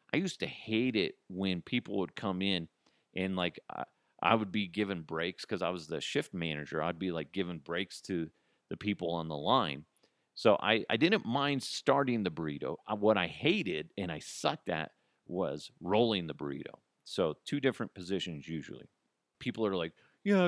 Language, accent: English, American